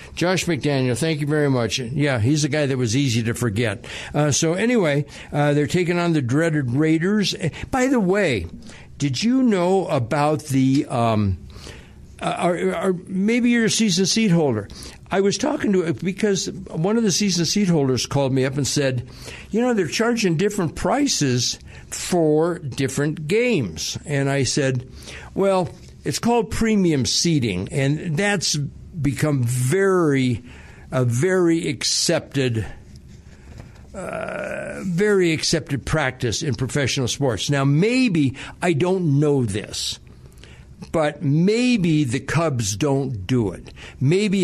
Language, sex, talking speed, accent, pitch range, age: English, male, 140 wpm, American, 130-175 Hz, 60-79